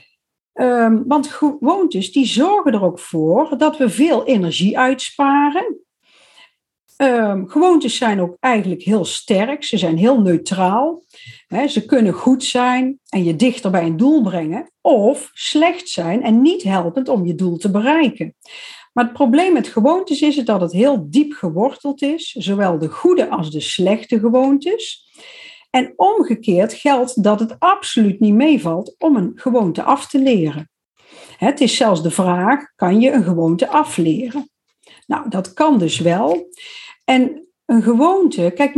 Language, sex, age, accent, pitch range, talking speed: Dutch, female, 50-69, Dutch, 200-295 Hz, 150 wpm